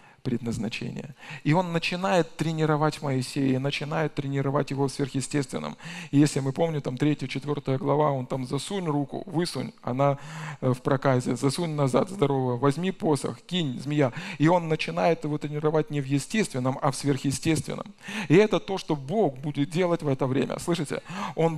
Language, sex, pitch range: Russian, male, 140-175 Hz